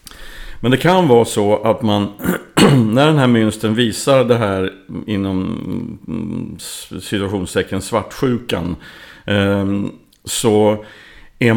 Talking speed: 100 wpm